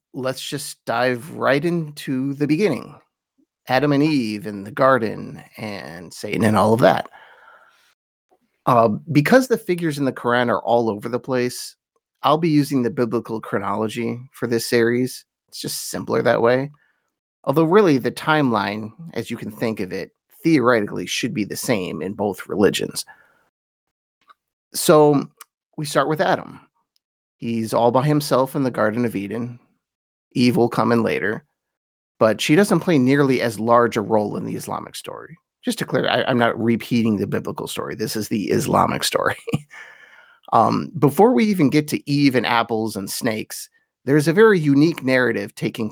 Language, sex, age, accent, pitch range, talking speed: English, male, 30-49, American, 115-150 Hz, 165 wpm